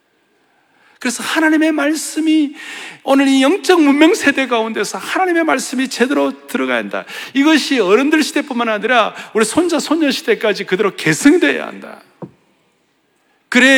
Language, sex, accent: Korean, male, native